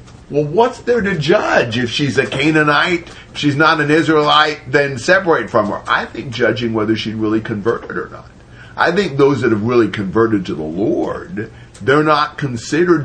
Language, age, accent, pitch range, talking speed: English, 50-69, American, 105-150 Hz, 185 wpm